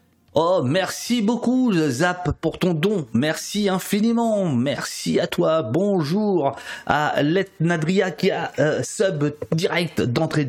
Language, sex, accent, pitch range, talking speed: French, male, French, 125-185 Hz, 120 wpm